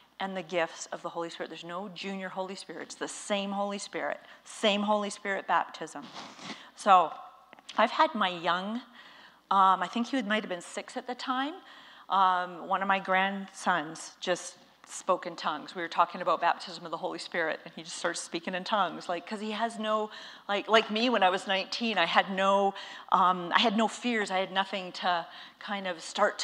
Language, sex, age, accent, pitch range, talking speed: English, female, 40-59, American, 180-220 Hz, 205 wpm